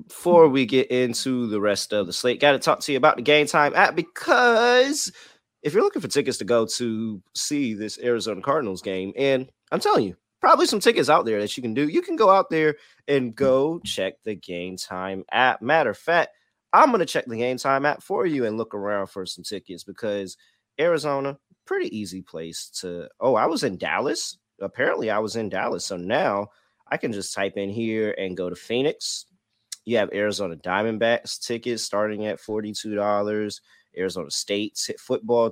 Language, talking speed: English, 195 wpm